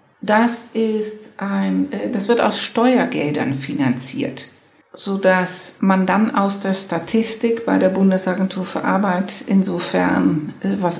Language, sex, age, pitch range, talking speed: German, female, 60-79, 175-205 Hz, 115 wpm